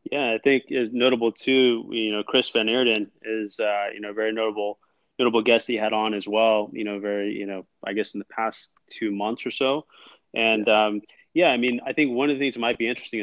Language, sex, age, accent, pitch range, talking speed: English, male, 20-39, American, 100-115 Hz, 240 wpm